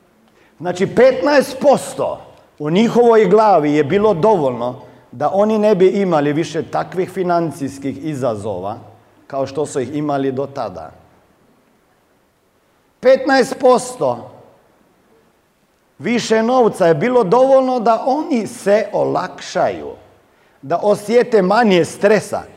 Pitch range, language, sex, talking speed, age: 160-245 Hz, Croatian, male, 100 wpm, 50-69